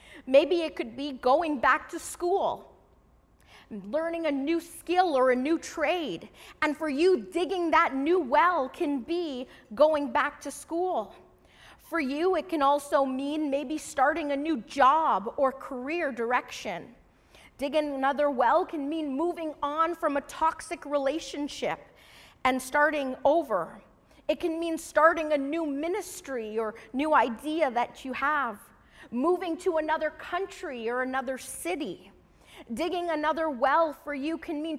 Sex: female